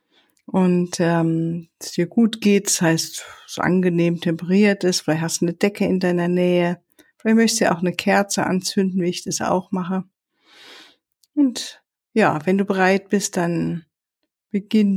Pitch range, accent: 180-210 Hz, German